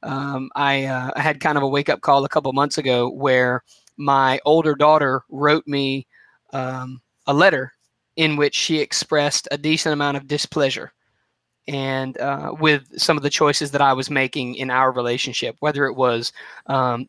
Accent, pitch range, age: American, 135-155 Hz, 20-39